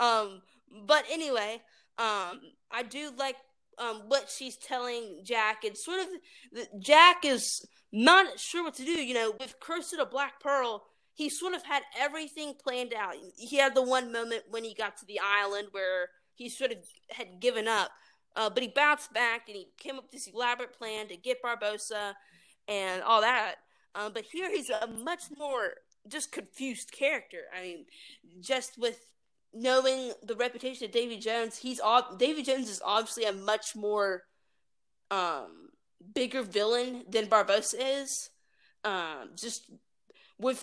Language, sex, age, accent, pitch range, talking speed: English, female, 20-39, American, 215-270 Hz, 165 wpm